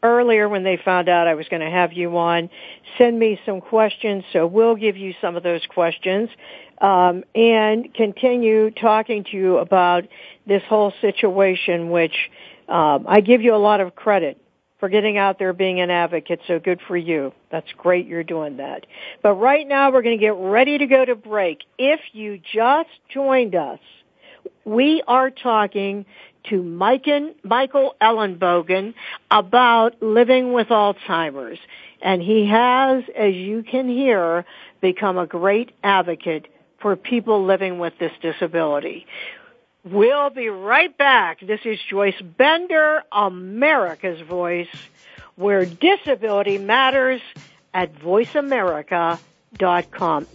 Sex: female